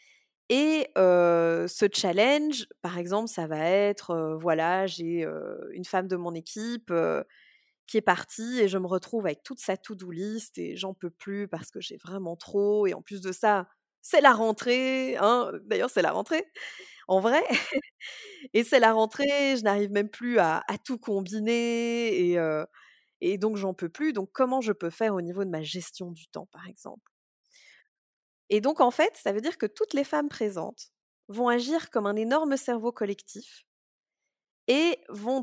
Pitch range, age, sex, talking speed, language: 190-250 Hz, 20-39, female, 180 wpm, French